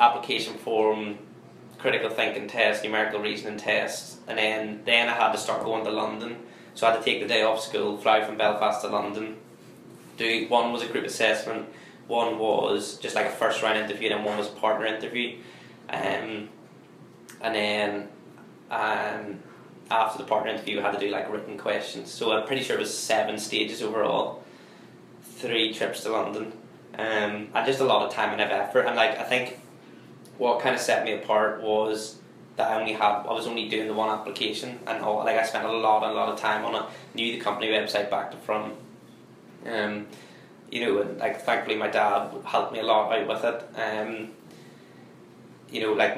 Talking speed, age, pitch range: 195 wpm, 10-29, 105-115 Hz